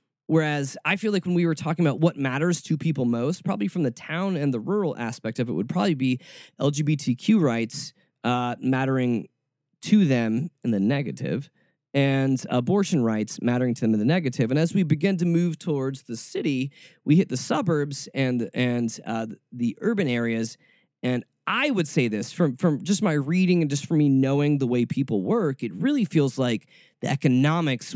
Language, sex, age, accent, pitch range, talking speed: English, male, 20-39, American, 130-185 Hz, 190 wpm